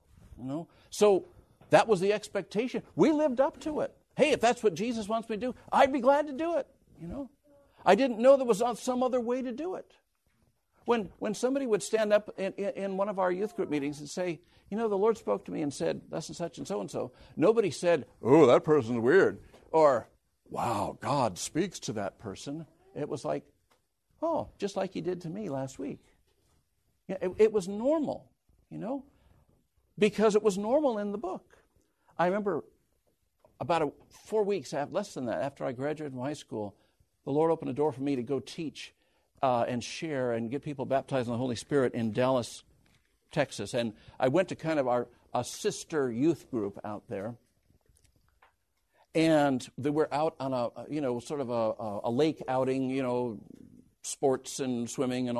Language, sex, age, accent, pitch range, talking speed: English, male, 60-79, American, 130-215 Hz, 205 wpm